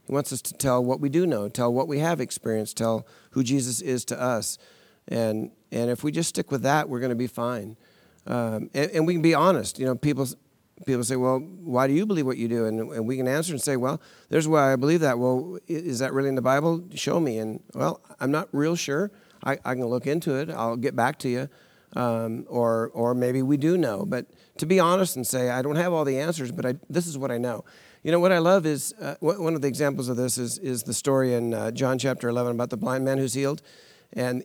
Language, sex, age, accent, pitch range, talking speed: English, male, 50-69, American, 120-155 Hz, 255 wpm